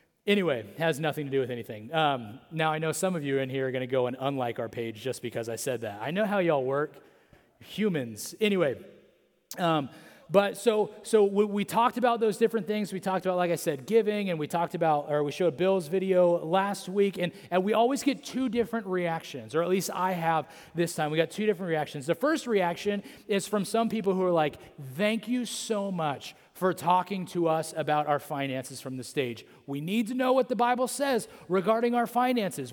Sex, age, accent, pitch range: male, 30-49, American, 150-205 Hz